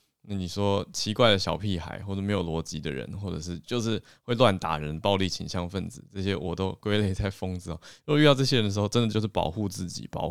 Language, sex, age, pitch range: Chinese, male, 20-39, 85-110 Hz